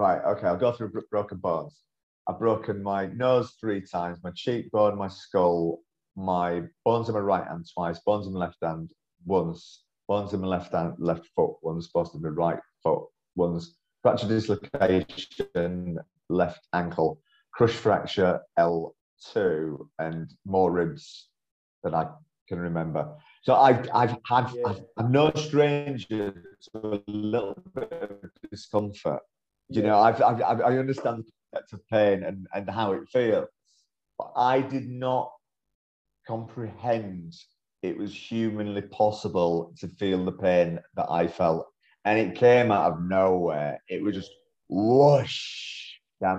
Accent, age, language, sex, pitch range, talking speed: British, 30-49, English, male, 90-120 Hz, 145 wpm